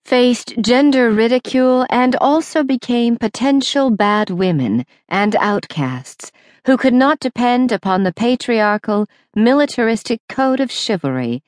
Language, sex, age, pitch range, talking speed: English, female, 50-69, 170-245 Hz, 115 wpm